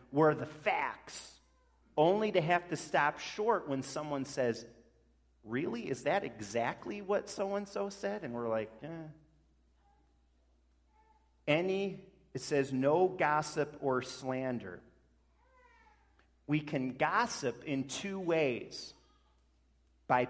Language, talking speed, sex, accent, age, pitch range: English, 115 wpm, male, American, 40-59, 110-165 Hz